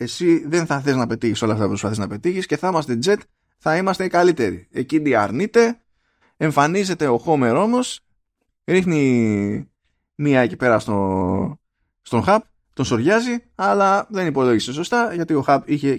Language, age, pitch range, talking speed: Greek, 20-39, 115-190 Hz, 160 wpm